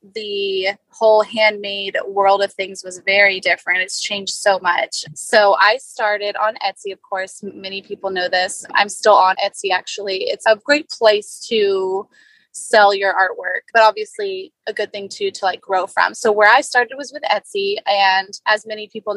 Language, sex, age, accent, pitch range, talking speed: English, female, 20-39, American, 195-225 Hz, 180 wpm